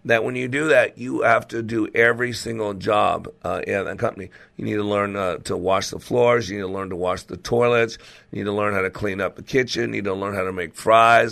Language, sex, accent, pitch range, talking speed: English, male, American, 105-125 Hz, 270 wpm